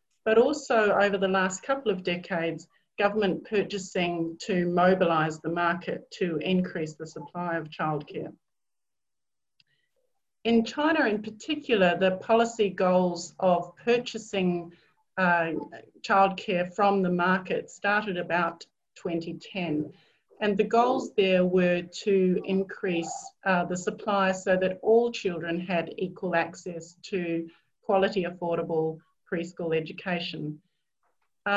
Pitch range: 175-205 Hz